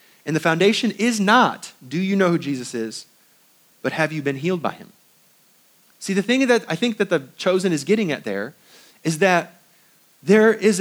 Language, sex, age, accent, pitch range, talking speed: English, male, 30-49, American, 150-200 Hz, 195 wpm